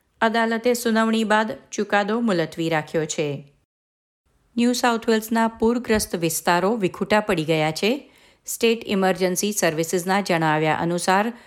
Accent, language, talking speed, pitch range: native, Gujarati, 95 wpm, 165-225 Hz